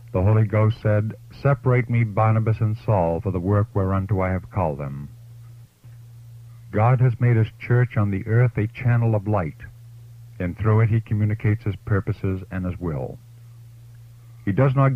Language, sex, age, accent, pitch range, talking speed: English, male, 50-69, American, 105-120 Hz, 170 wpm